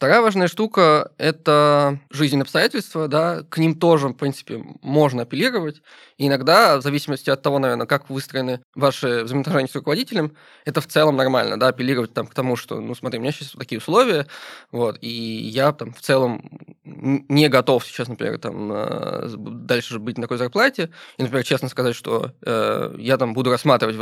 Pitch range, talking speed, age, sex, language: 120-150 Hz, 175 wpm, 20-39, male, Russian